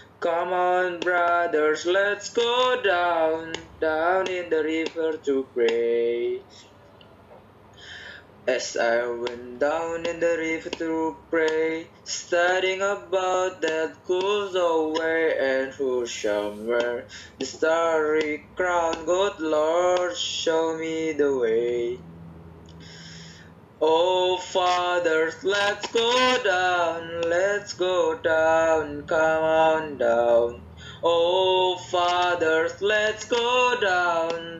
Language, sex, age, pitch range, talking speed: Indonesian, male, 20-39, 120-175 Hz, 95 wpm